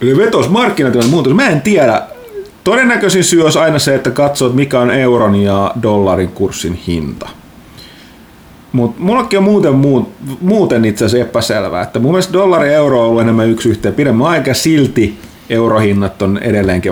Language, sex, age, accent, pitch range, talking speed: Finnish, male, 30-49, native, 105-130 Hz, 155 wpm